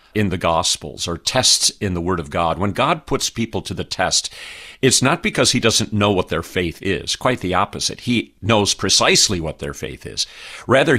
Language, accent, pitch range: English, American, 95-125 Hz